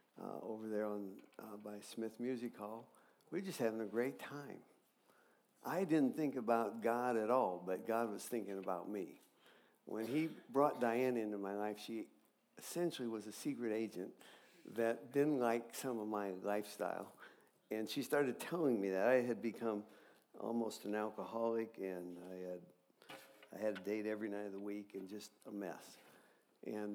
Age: 60-79